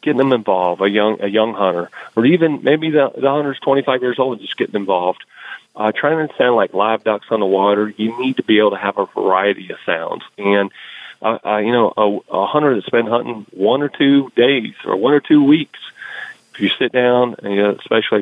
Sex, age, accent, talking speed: male, 40-59, American, 225 wpm